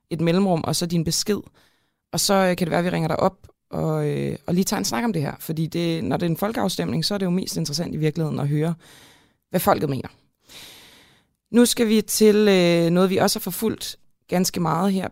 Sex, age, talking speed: female, 20-39, 240 wpm